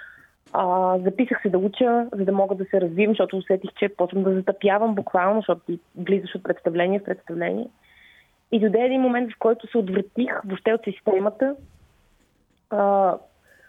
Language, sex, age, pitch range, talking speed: Bulgarian, female, 30-49, 190-225 Hz, 160 wpm